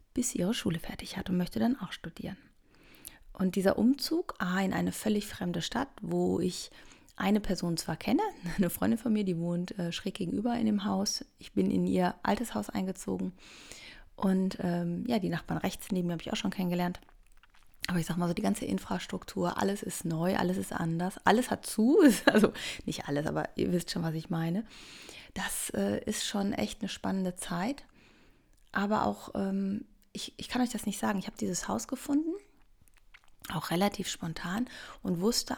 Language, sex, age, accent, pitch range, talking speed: German, female, 30-49, German, 170-205 Hz, 190 wpm